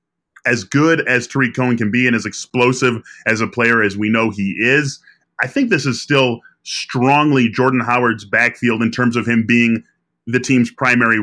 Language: English